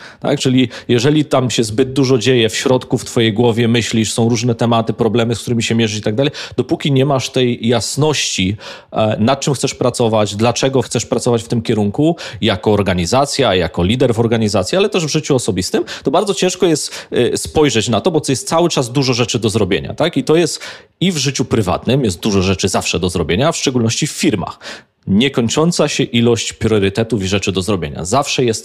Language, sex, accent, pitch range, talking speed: Polish, male, native, 110-140 Hz, 195 wpm